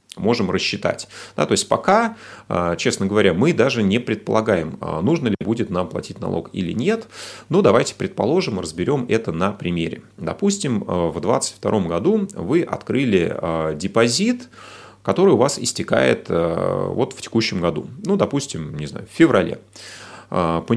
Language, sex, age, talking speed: Russian, male, 30-49, 140 wpm